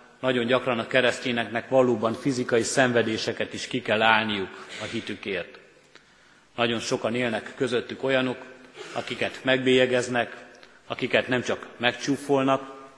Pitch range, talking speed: 115-130 Hz, 110 wpm